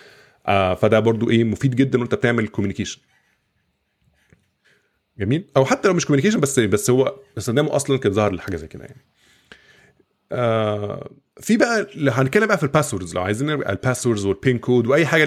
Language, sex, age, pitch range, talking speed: Arabic, male, 20-39, 105-145 Hz, 155 wpm